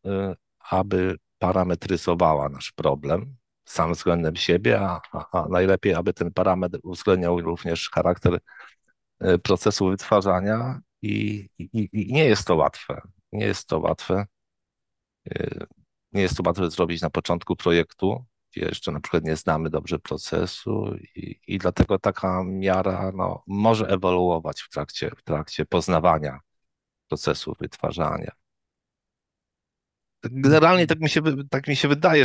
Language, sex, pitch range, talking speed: Polish, male, 85-110 Hz, 115 wpm